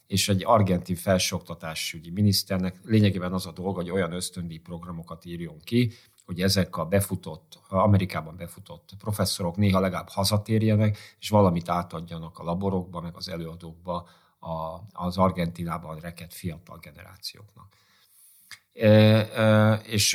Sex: male